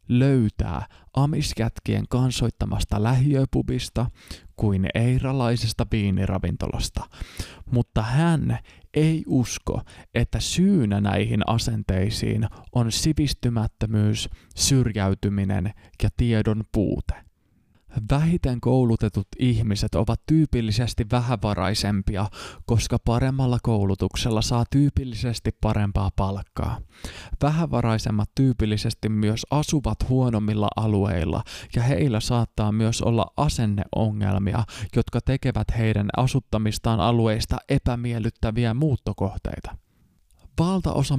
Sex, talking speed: male, 80 wpm